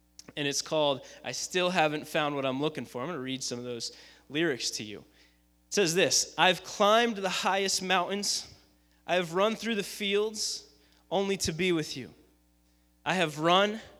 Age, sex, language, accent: 20-39, male, English, American